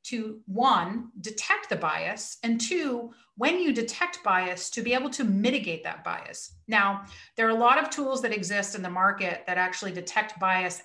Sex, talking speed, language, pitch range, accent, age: female, 190 wpm, English, 180-230 Hz, American, 40-59